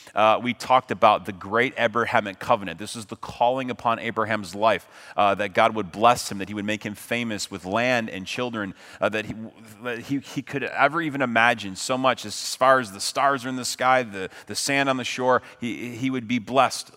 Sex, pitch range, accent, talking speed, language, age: male, 100-130 Hz, American, 225 wpm, English, 30-49